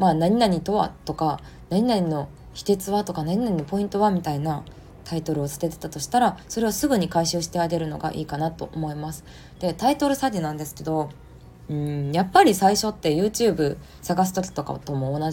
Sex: female